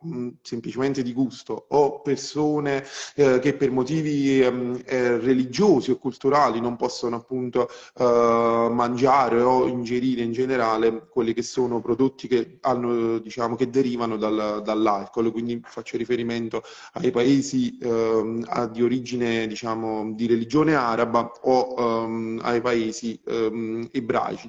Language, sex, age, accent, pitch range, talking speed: Italian, male, 30-49, native, 115-135 Hz, 125 wpm